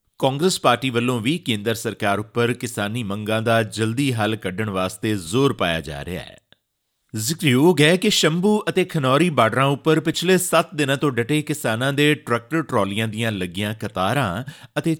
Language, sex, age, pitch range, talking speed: Punjabi, male, 30-49, 105-145 Hz, 160 wpm